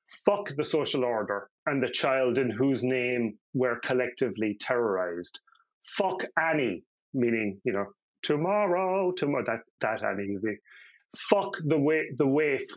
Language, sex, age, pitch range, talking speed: English, male, 30-49, 120-155 Hz, 130 wpm